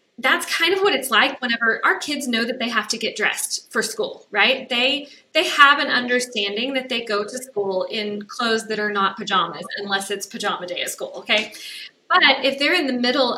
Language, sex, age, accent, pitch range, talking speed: English, female, 20-39, American, 205-265 Hz, 215 wpm